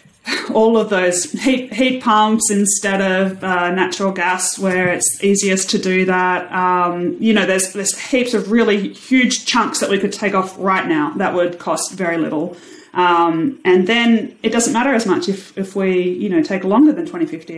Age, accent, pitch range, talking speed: 30-49, Australian, 165-215 Hz, 190 wpm